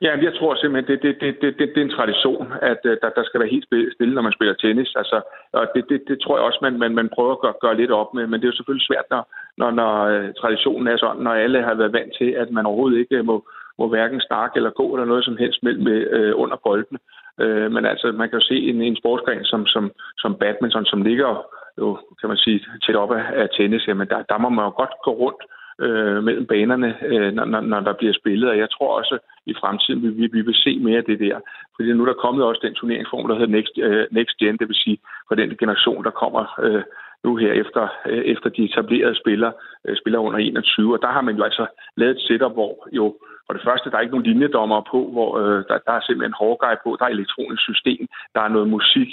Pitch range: 115-140 Hz